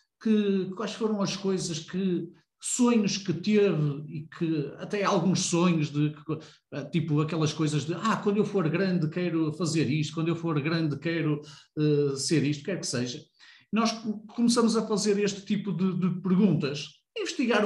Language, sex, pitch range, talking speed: Portuguese, male, 160-195 Hz, 170 wpm